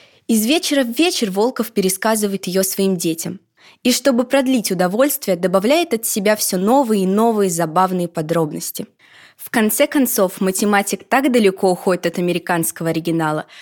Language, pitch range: Russian, 180-245 Hz